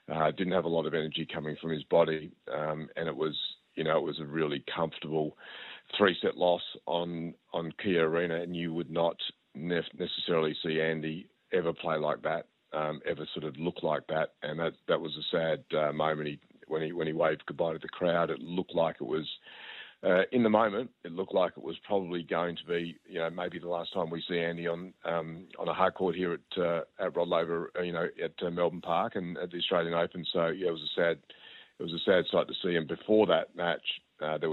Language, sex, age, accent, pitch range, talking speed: English, male, 40-59, Australian, 80-85 Hz, 230 wpm